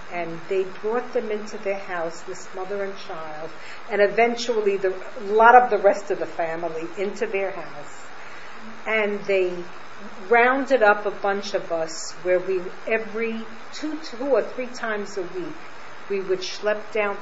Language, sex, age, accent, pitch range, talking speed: English, female, 50-69, American, 185-225 Hz, 165 wpm